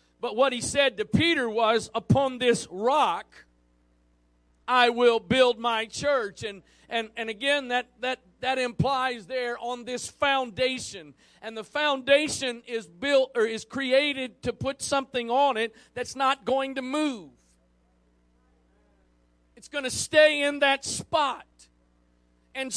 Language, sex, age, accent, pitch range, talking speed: English, male, 40-59, American, 165-270 Hz, 140 wpm